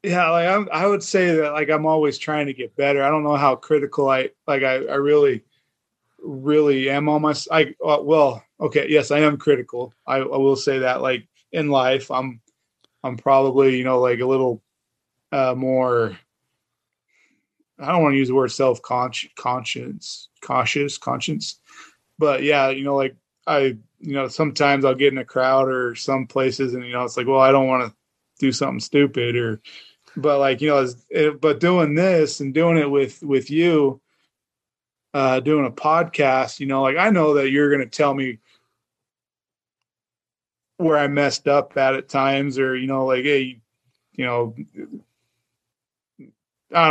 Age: 20-39